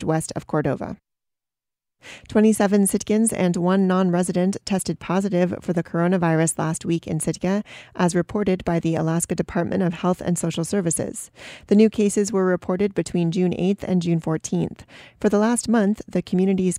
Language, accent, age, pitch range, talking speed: English, American, 30-49, 170-200 Hz, 160 wpm